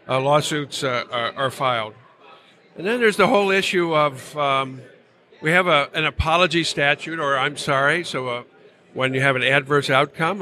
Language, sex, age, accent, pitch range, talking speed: English, male, 60-79, American, 135-160 Hz, 180 wpm